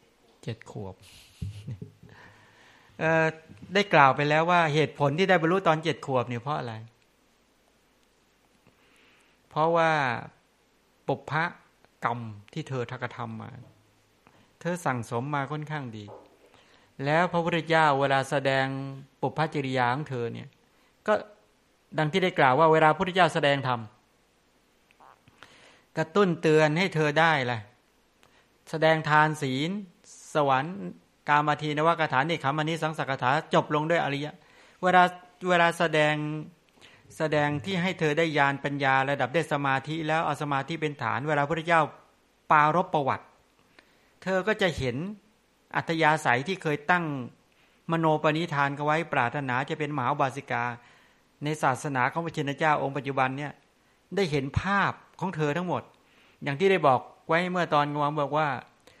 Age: 60-79